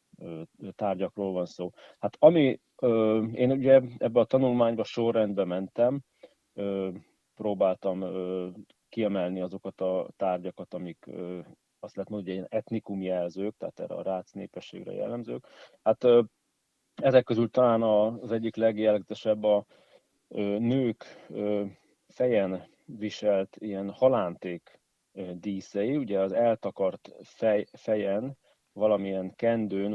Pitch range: 95-115 Hz